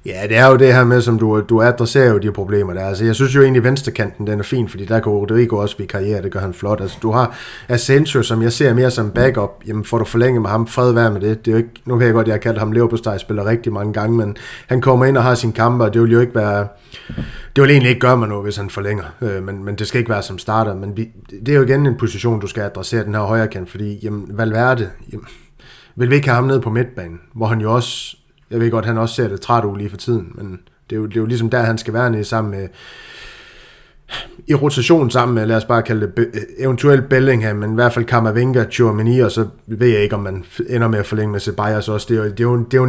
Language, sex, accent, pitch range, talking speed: Danish, male, native, 105-120 Hz, 275 wpm